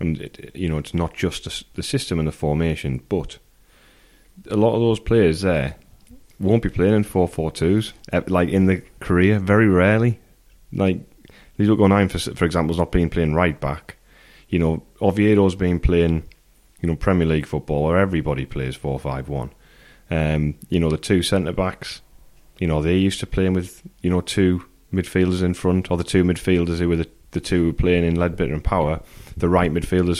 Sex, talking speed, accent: male, 195 wpm, British